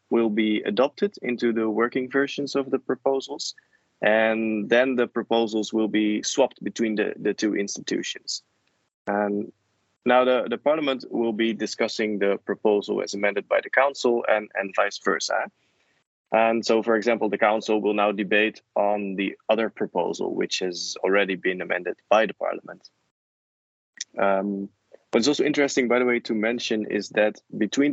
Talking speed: 155 wpm